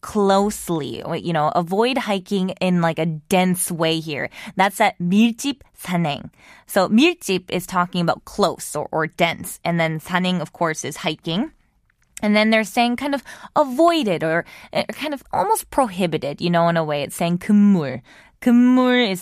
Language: Korean